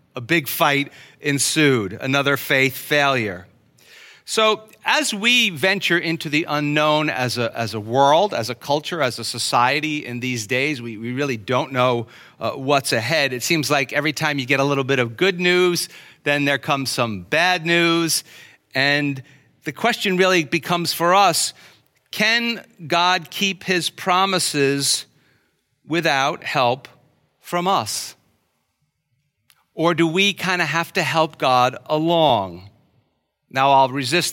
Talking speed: 145 wpm